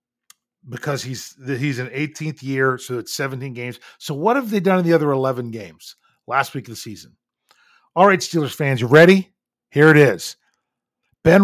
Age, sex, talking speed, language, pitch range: 40-59, male, 185 wpm, English, 125-175 Hz